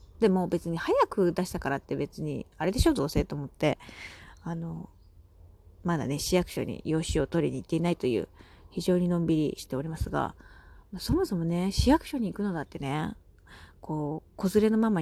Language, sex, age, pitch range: Japanese, female, 30-49, 150-190 Hz